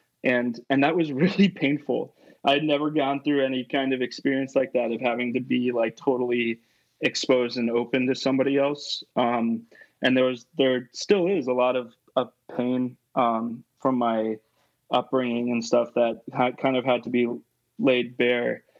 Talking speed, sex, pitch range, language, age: 180 wpm, male, 120-135 Hz, English, 20-39